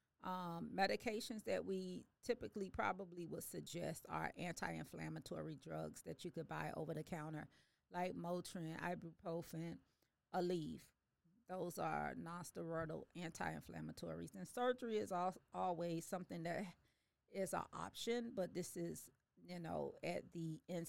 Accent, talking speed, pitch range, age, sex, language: American, 120 wpm, 165-190 Hz, 40-59, female, English